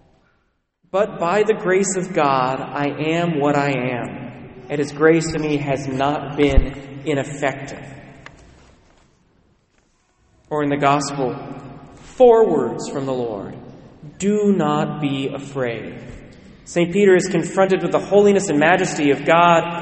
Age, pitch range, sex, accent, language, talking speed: 30-49, 150-205 Hz, male, American, English, 135 wpm